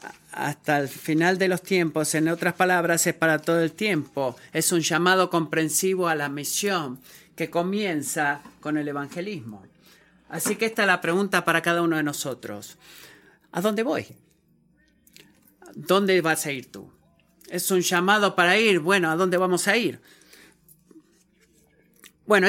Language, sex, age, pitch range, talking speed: Spanish, male, 40-59, 150-185 Hz, 150 wpm